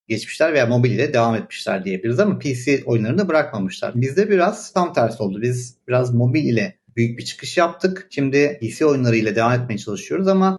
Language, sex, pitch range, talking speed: Turkish, male, 120-155 Hz, 175 wpm